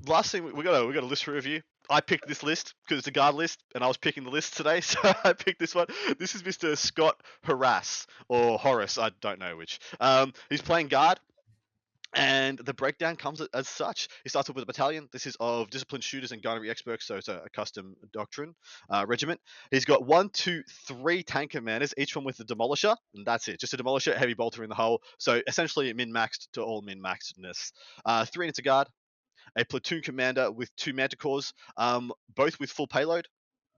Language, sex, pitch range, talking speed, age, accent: English, male, 115-145 Hz, 210 wpm, 20-39, Australian